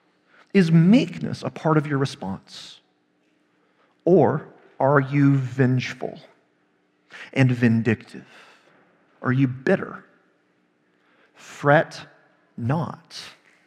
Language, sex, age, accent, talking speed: English, male, 40-59, American, 80 wpm